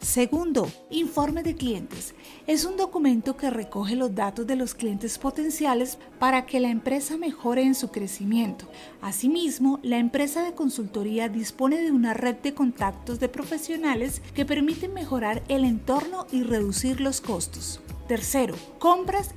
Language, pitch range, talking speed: Spanish, 225-275 Hz, 145 wpm